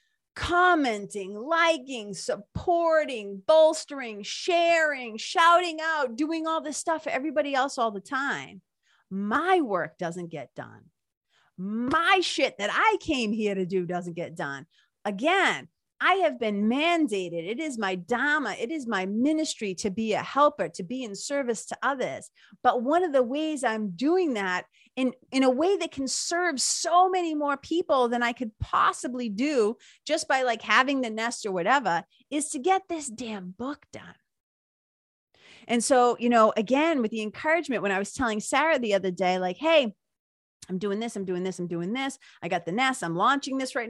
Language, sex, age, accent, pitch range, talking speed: English, female, 40-59, American, 205-295 Hz, 180 wpm